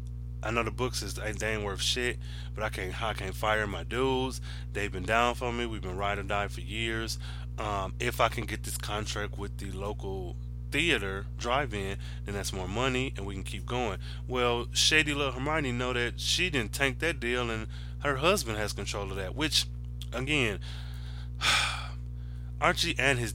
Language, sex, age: English, male, 20-39